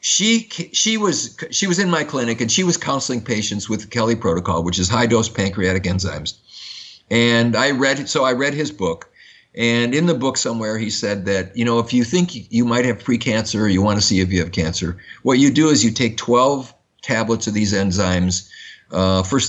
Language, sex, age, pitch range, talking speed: English, male, 50-69, 95-120 Hz, 215 wpm